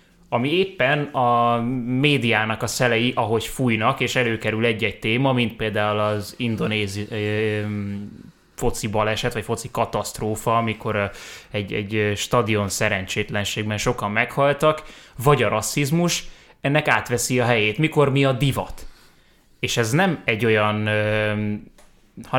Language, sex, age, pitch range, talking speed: Hungarian, male, 20-39, 110-130 Hz, 120 wpm